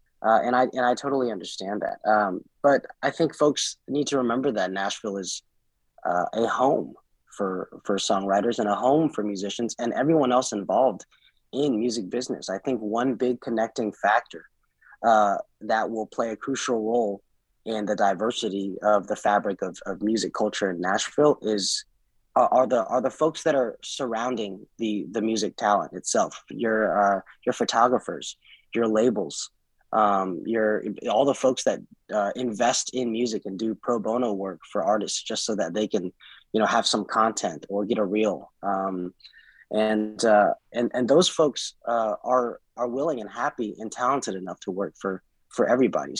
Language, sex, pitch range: English, male, 105-125 Hz